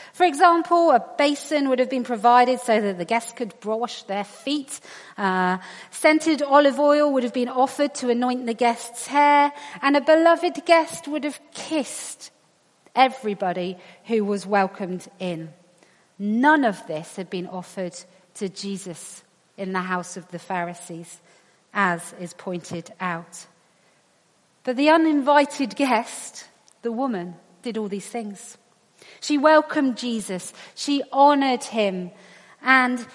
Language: English